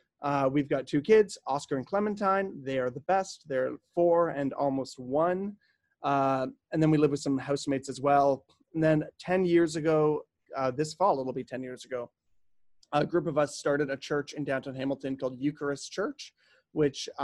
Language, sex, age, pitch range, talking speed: English, male, 30-49, 135-160 Hz, 190 wpm